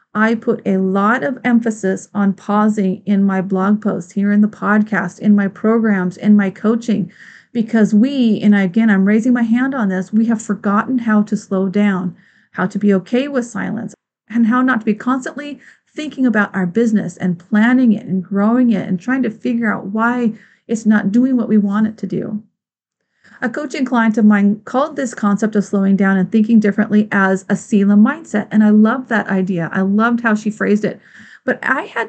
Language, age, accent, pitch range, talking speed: English, 40-59, American, 205-240 Hz, 200 wpm